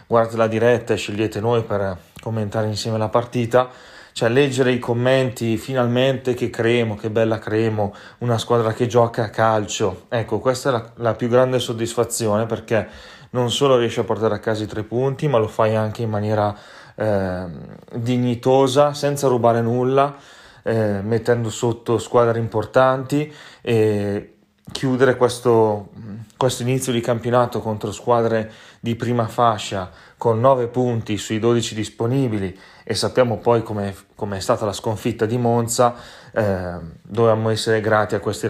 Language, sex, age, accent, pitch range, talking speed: Italian, male, 30-49, native, 105-120 Hz, 150 wpm